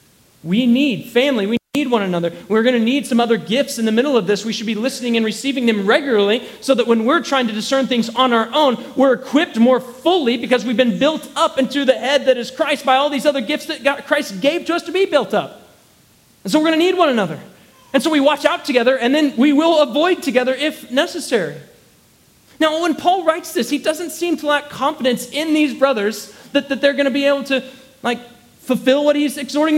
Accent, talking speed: American, 235 wpm